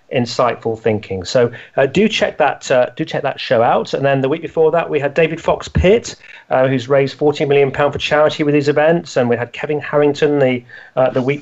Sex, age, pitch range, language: male, 40-59, 125-155 Hz, English